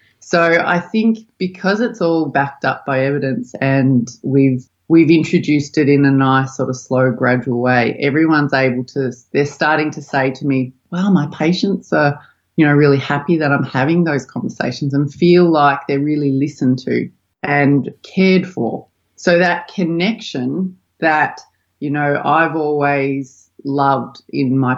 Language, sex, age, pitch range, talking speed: English, female, 30-49, 135-165 Hz, 160 wpm